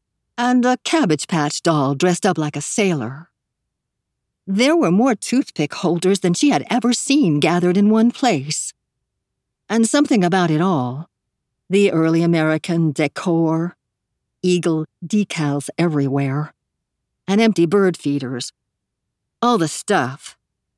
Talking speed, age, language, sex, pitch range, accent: 125 wpm, 60-79, English, female, 155-210 Hz, American